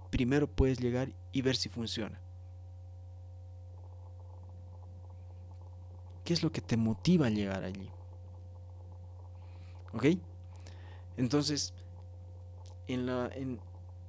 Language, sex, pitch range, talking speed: Portuguese, male, 90-120 Hz, 90 wpm